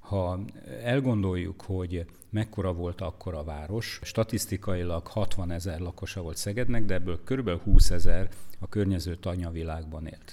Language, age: Hungarian, 50-69